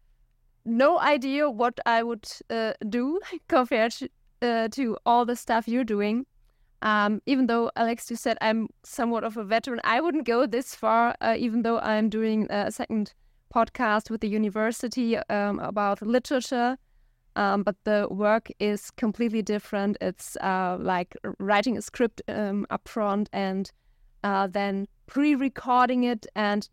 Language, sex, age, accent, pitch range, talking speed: English, female, 20-39, German, 205-245 Hz, 155 wpm